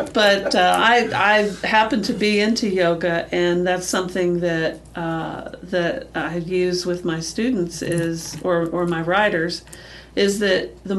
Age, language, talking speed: 50-69, English, 155 wpm